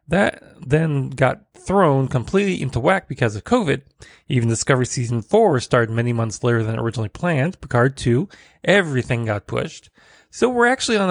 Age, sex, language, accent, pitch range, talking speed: 30-49, male, English, American, 120-160 Hz, 165 wpm